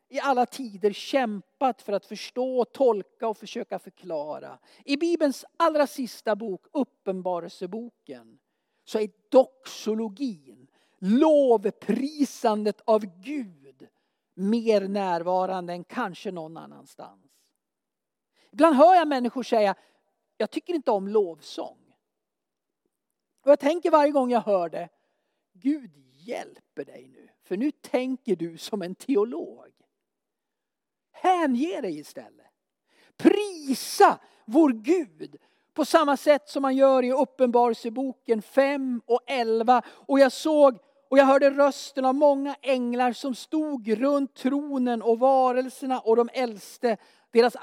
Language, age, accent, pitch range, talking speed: Swedish, 50-69, native, 210-275 Hz, 120 wpm